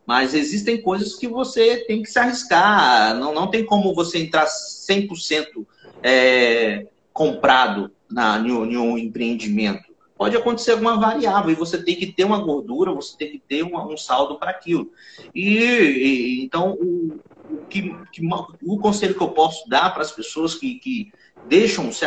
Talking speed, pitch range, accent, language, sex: 165 wpm, 160-220 Hz, Brazilian, Portuguese, male